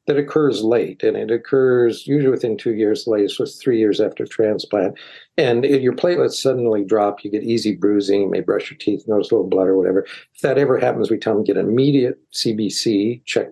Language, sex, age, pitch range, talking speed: English, male, 50-69, 100-150 Hz, 220 wpm